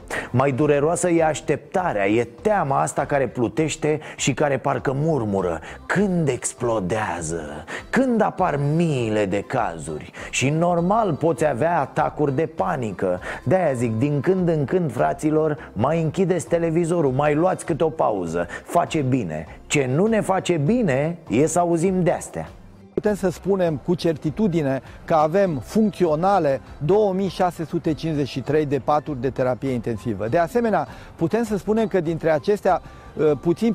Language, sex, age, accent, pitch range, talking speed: Romanian, male, 30-49, native, 135-180 Hz, 135 wpm